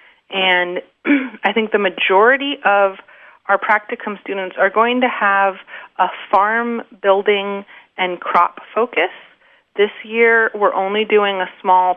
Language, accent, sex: English, American, female